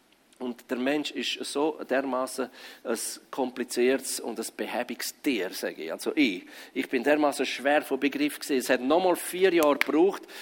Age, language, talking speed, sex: 50-69, German, 165 wpm, male